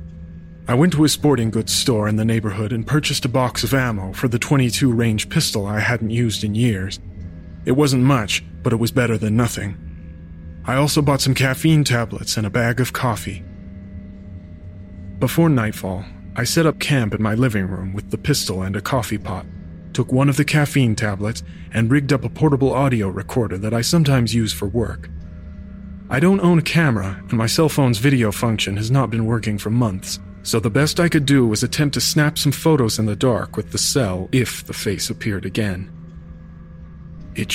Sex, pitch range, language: male, 95-125 Hz, English